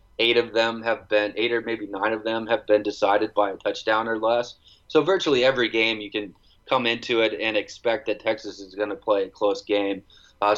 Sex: male